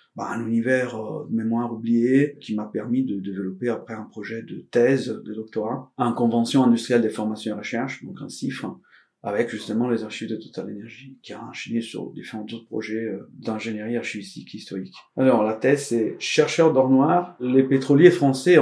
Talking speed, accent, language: 185 wpm, French, French